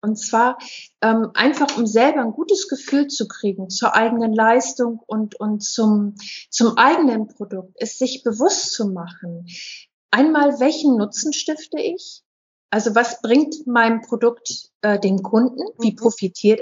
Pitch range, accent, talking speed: 210-270 Hz, German, 145 wpm